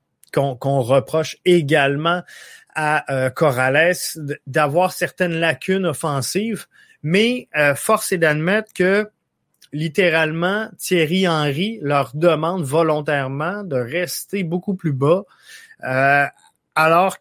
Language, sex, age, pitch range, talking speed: French, male, 20-39, 150-195 Hz, 105 wpm